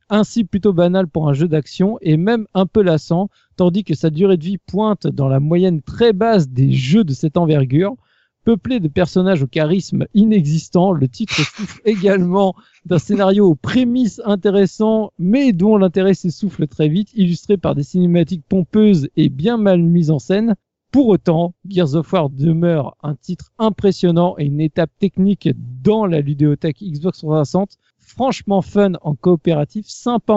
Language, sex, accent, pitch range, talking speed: French, male, French, 155-200 Hz, 165 wpm